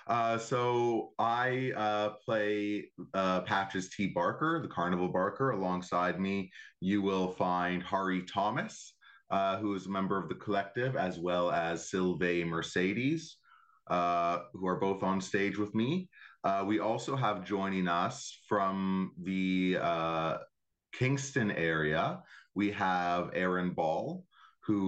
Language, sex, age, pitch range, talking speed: English, male, 30-49, 90-105 Hz, 135 wpm